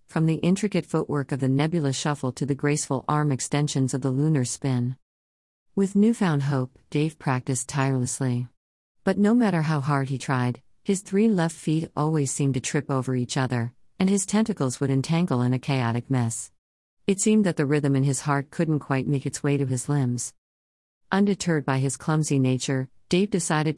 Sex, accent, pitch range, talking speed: female, American, 130-160 Hz, 185 wpm